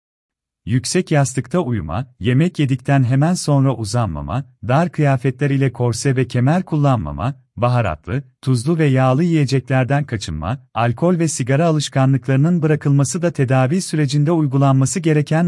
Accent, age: native, 40-59